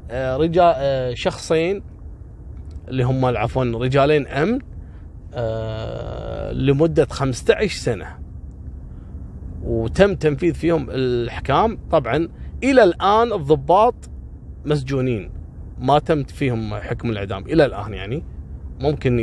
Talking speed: 95 wpm